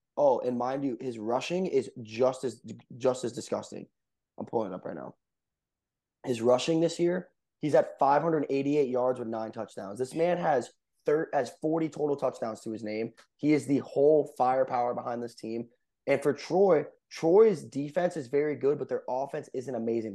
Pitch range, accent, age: 115-140 Hz, American, 20-39